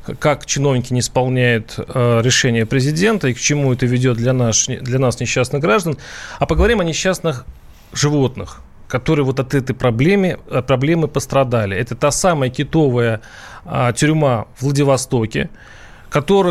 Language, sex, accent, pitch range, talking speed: Russian, male, native, 125-165 Hz, 130 wpm